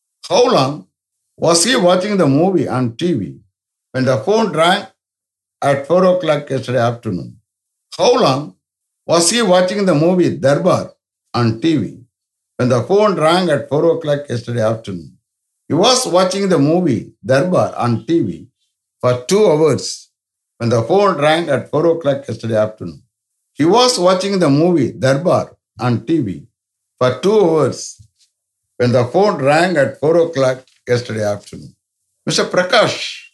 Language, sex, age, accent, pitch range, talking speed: English, male, 60-79, Indian, 115-175 Hz, 140 wpm